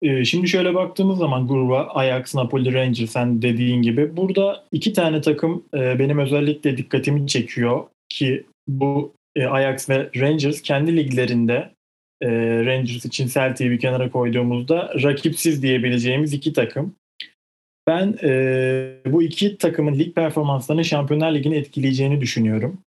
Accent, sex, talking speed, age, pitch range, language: native, male, 125 wpm, 30-49, 120-150 Hz, Turkish